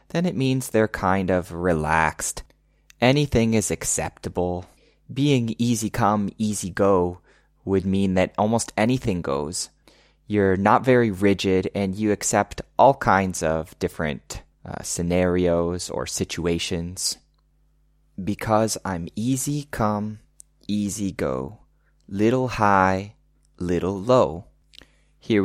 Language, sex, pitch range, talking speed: English, male, 85-110 Hz, 110 wpm